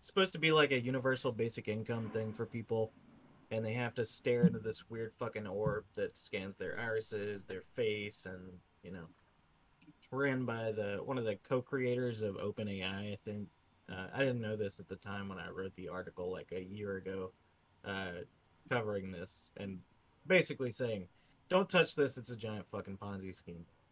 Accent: American